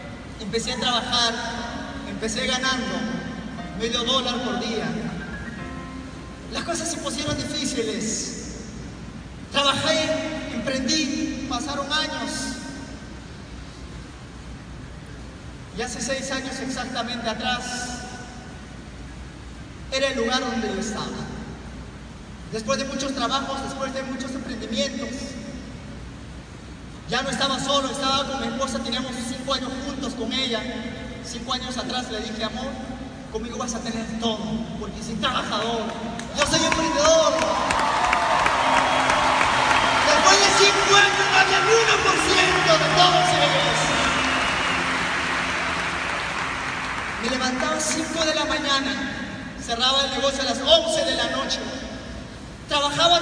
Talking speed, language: 110 wpm, Spanish